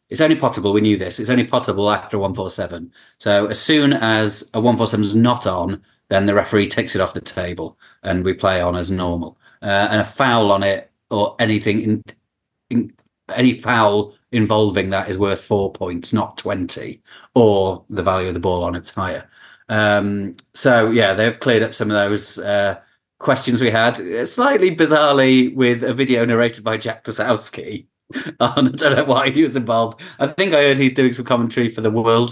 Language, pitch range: English, 100-120 Hz